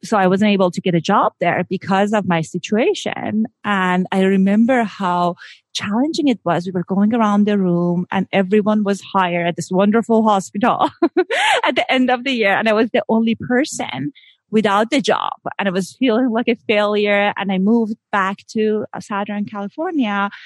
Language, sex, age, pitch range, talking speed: English, female, 30-49, 195-245 Hz, 185 wpm